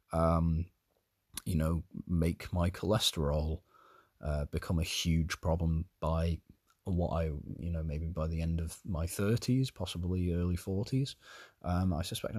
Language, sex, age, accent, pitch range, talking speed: English, male, 20-39, British, 80-100 Hz, 140 wpm